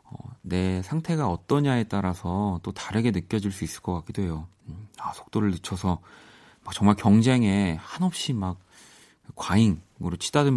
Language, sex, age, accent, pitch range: Korean, male, 30-49, native, 90-120 Hz